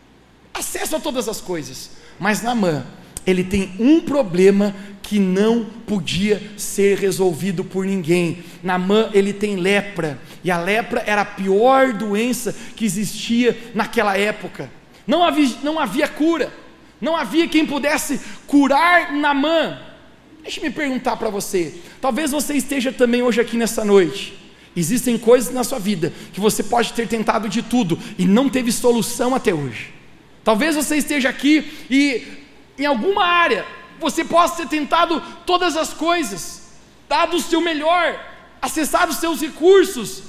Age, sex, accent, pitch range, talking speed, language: 40-59, male, Brazilian, 205-280 Hz, 145 wpm, Portuguese